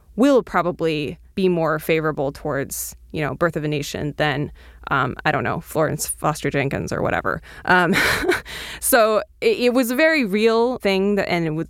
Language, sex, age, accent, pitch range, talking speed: English, female, 20-39, American, 175-250 Hz, 175 wpm